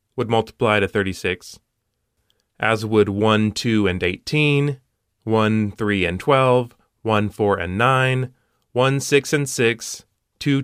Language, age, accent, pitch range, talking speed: English, 30-49, American, 105-130 Hz, 130 wpm